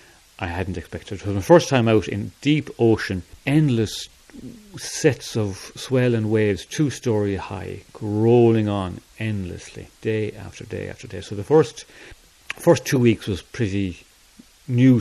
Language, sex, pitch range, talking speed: English, male, 100-125 Hz, 150 wpm